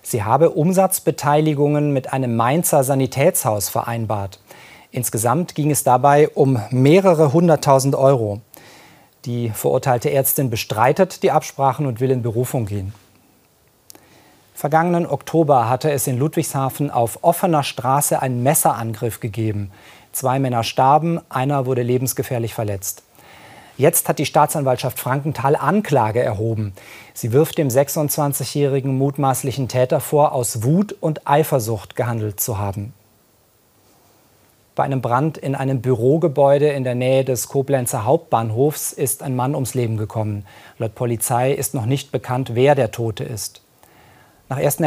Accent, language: German, German